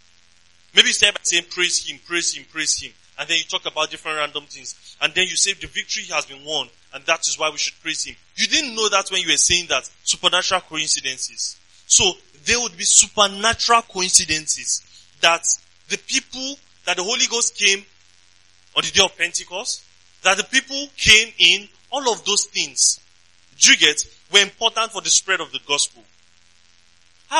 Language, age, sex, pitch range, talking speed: English, 20-39, male, 115-190 Hz, 190 wpm